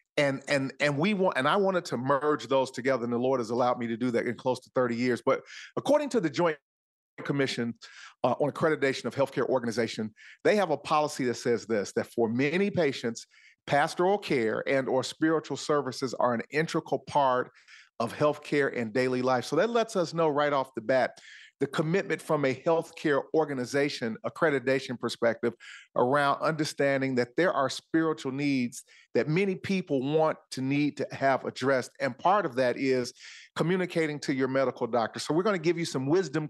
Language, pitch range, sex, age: English, 125-155 Hz, male, 40-59